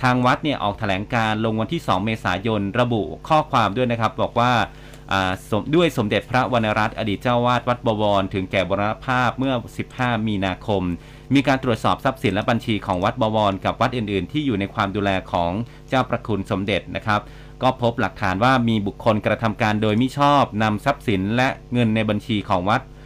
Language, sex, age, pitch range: Thai, male, 30-49, 100-130 Hz